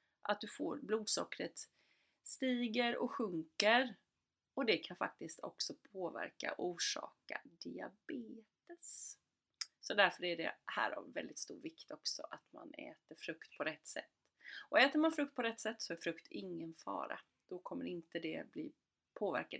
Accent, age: native, 30-49